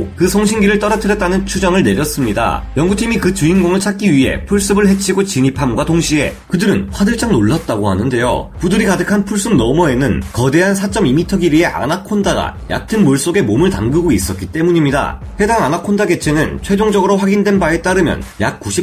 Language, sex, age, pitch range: Korean, male, 30-49, 160-205 Hz